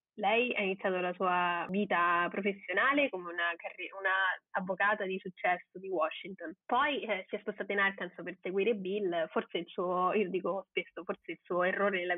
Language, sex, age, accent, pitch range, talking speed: Italian, female, 20-39, native, 185-215 Hz, 180 wpm